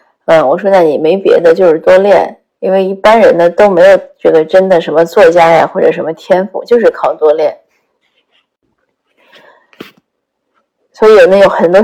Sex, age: female, 20-39